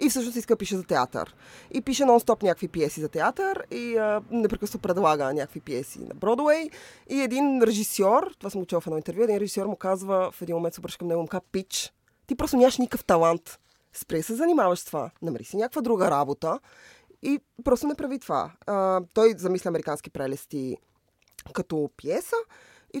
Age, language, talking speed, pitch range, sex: 20-39, Bulgarian, 190 wpm, 155-225 Hz, female